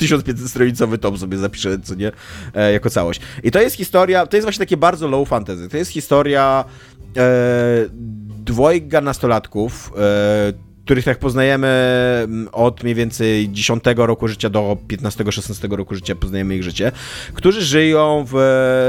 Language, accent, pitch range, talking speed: Polish, native, 110-140 Hz, 145 wpm